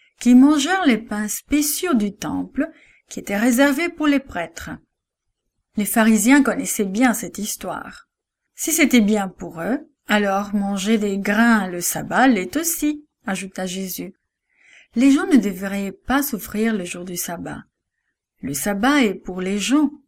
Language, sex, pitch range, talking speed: English, female, 200-275 Hz, 150 wpm